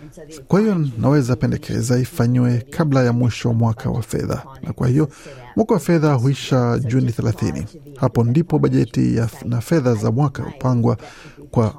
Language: Swahili